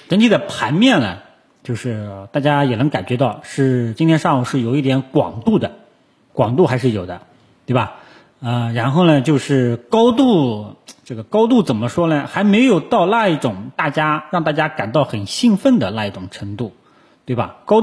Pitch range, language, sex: 115-155 Hz, Chinese, male